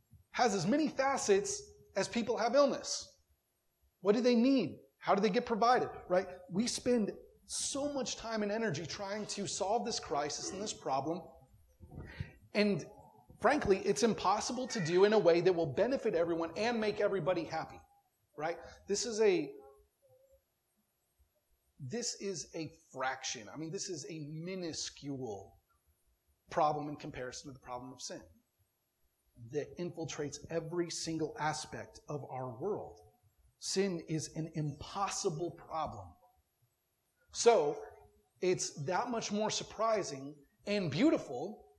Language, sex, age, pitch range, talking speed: English, male, 30-49, 155-235 Hz, 135 wpm